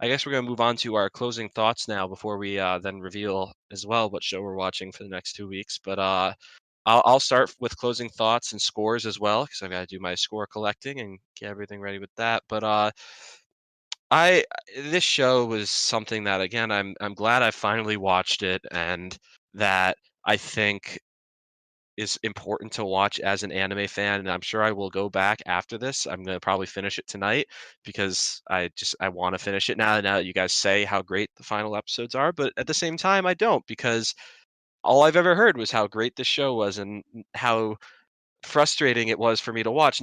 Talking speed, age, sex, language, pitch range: 215 wpm, 20-39, male, English, 100-120 Hz